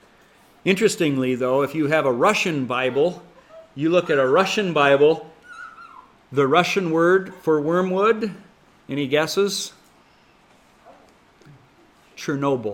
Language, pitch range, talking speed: English, 130-155 Hz, 105 wpm